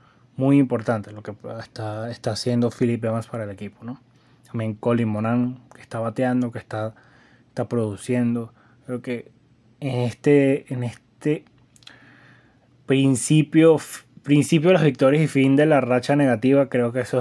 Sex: male